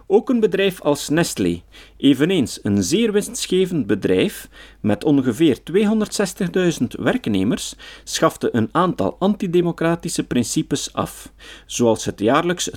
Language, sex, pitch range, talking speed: Dutch, male, 115-195 Hz, 110 wpm